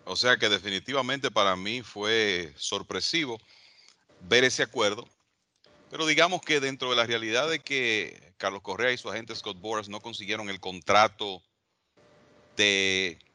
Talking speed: 145 wpm